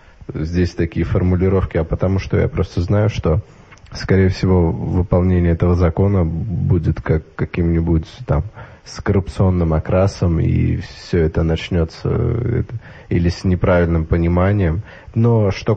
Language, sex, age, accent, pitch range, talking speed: Russian, male, 20-39, native, 85-105 Hz, 120 wpm